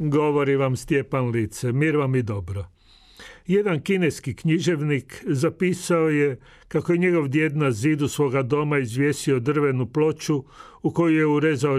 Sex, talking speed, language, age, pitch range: male, 135 wpm, Croatian, 40-59, 125-160 Hz